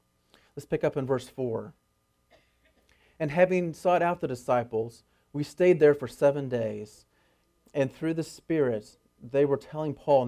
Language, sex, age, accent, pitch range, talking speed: English, male, 40-59, American, 120-155 Hz, 150 wpm